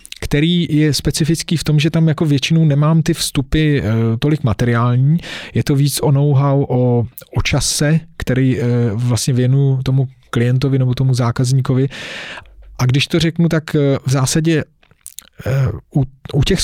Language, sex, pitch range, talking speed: Czech, male, 130-150 Hz, 160 wpm